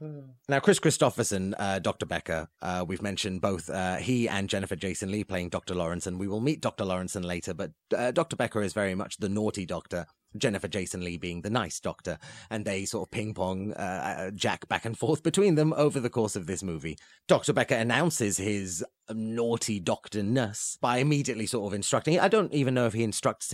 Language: English